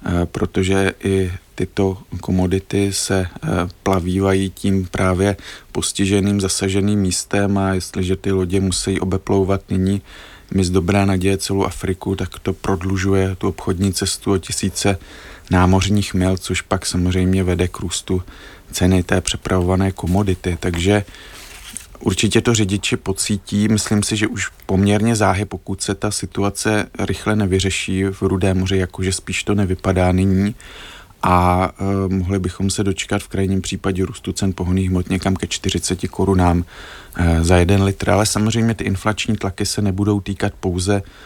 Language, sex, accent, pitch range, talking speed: Czech, male, native, 95-100 Hz, 145 wpm